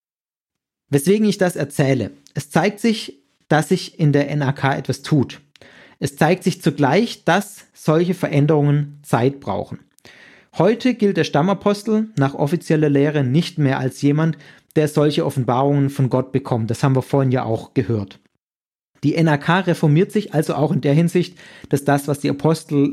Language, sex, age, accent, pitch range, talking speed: German, male, 40-59, German, 140-165 Hz, 160 wpm